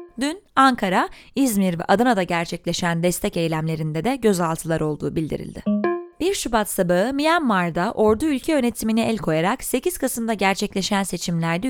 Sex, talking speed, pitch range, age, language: female, 130 wpm, 195-270 Hz, 20-39, Turkish